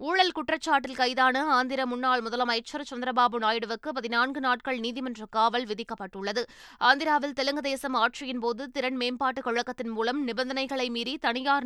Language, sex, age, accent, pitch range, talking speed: Tamil, female, 20-39, native, 240-275 Hz, 125 wpm